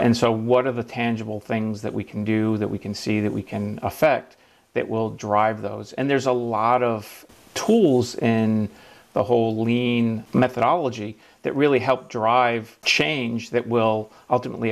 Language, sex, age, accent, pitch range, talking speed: English, male, 40-59, American, 110-125 Hz, 170 wpm